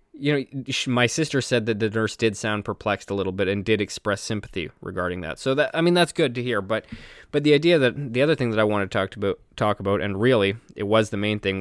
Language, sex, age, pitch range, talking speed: English, male, 20-39, 100-125 Hz, 265 wpm